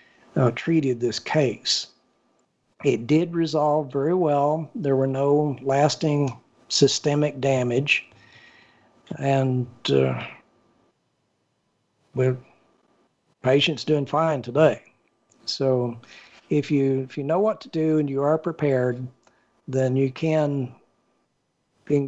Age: 60-79